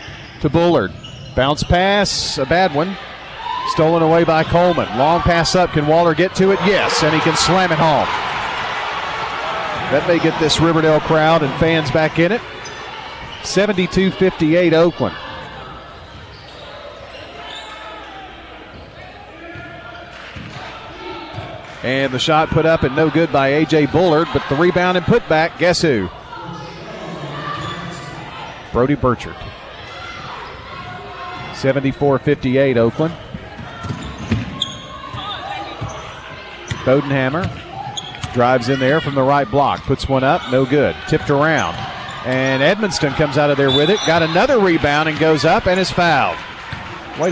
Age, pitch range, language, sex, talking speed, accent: 40-59, 135-175 Hz, English, male, 120 wpm, American